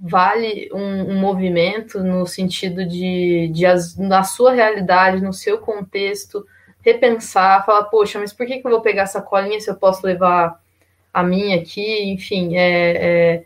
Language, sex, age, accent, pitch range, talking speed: Portuguese, female, 20-39, Brazilian, 180-220 Hz, 165 wpm